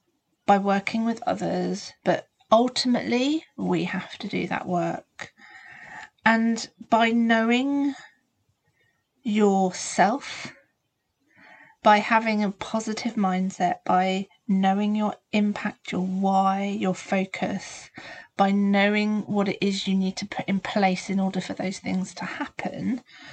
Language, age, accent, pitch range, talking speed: English, 40-59, British, 185-220 Hz, 120 wpm